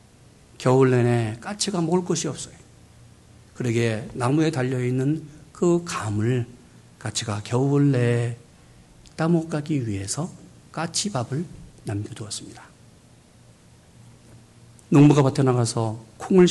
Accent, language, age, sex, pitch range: native, Korean, 50-69, male, 110-170 Hz